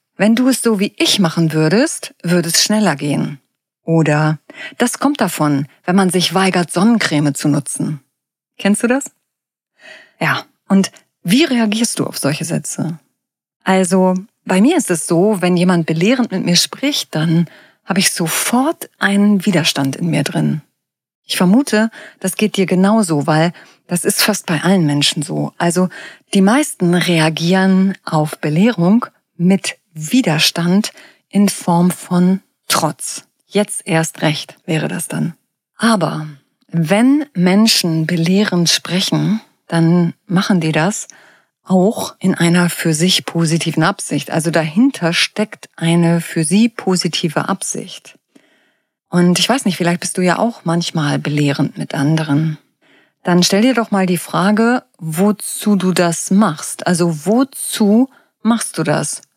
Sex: female